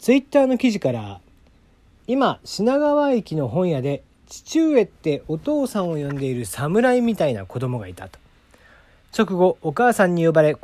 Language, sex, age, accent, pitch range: Japanese, male, 40-59, native, 125-180 Hz